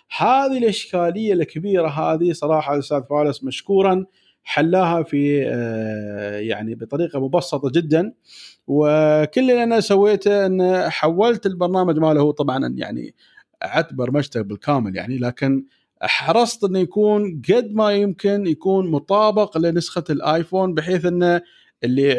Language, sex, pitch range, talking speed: Arabic, male, 140-195 Hz, 115 wpm